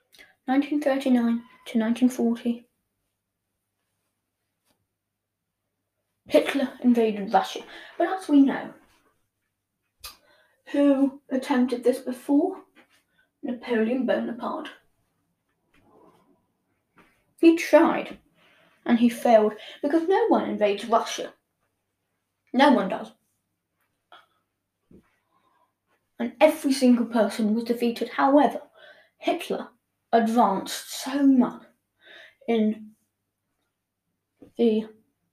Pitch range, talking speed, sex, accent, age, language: 205-275 Hz, 70 wpm, female, British, 10-29, English